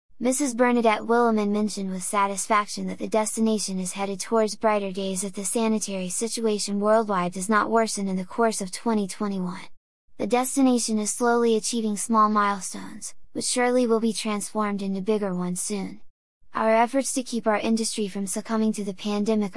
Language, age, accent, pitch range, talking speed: English, 10-29, American, 190-220 Hz, 165 wpm